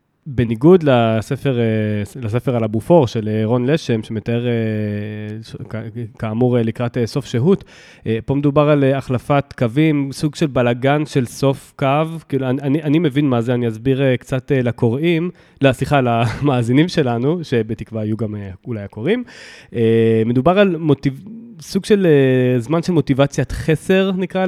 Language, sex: Hebrew, male